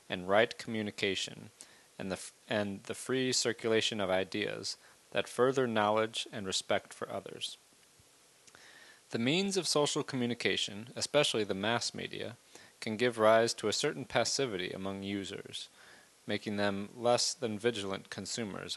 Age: 30-49